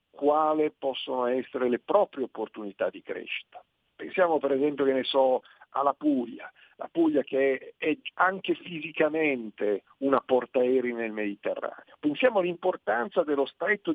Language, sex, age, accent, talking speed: Italian, male, 50-69, native, 140 wpm